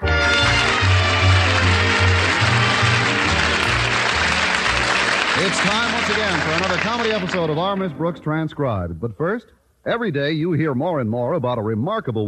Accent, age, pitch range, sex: American, 40-59, 115-175 Hz, male